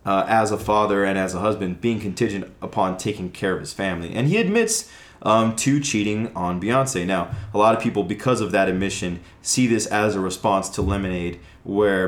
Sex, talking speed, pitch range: male, 205 wpm, 90-105 Hz